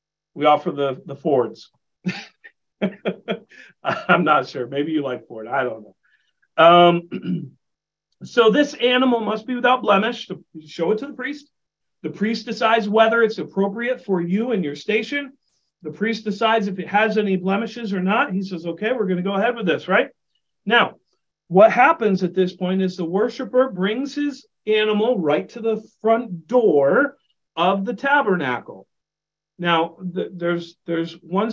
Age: 40-59